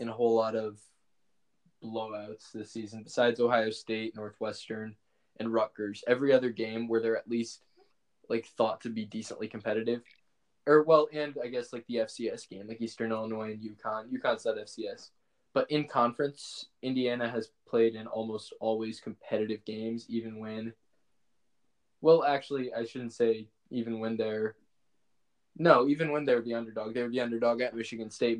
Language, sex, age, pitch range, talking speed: English, male, 20-39, 110-120 Hz, 165 wpm